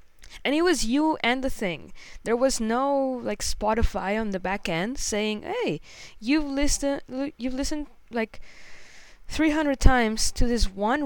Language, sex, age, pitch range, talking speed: English, female, 20-39, 195-260 Hz, 150 wpm